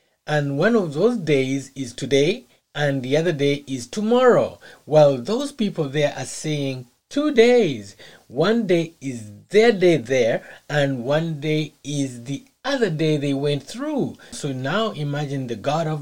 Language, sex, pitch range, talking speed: English, male, 130-180 Hz, 160 wpm